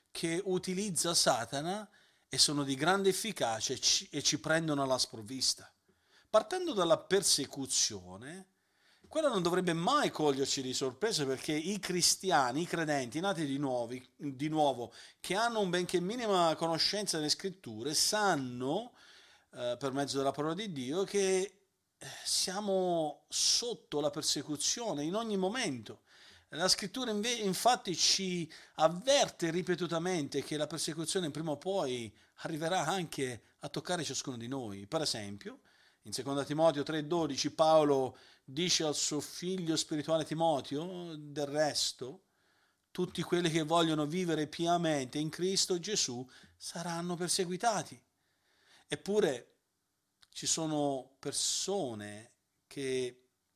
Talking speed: 120 wpm